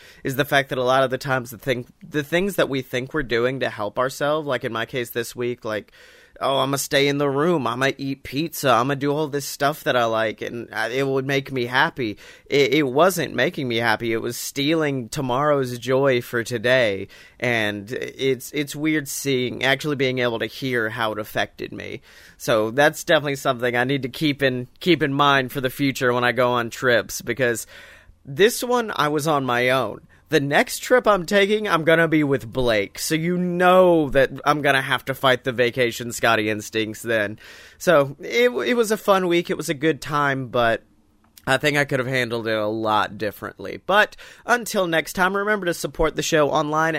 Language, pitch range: English, 125-170 Hz